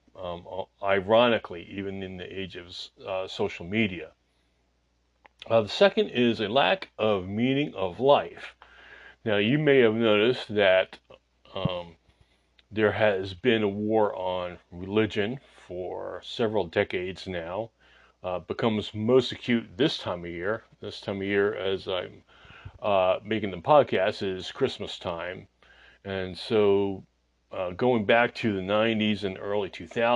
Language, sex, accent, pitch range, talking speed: English, male, American, 90-110 Hz, 135 wpm